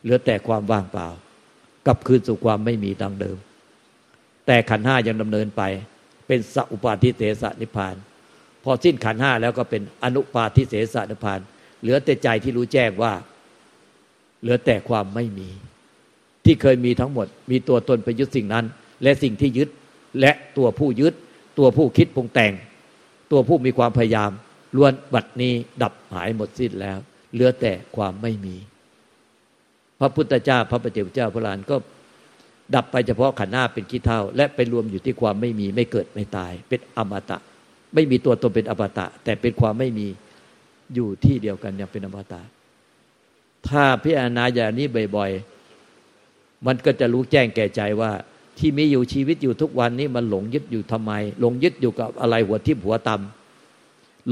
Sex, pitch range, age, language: male, 105-130 Hz, 60-79, Thai